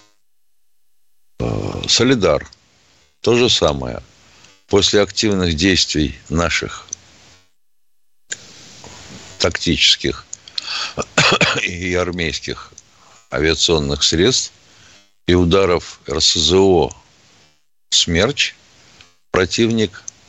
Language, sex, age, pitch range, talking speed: Russian, male, 60-79, 90-105 Hz, 55 wpm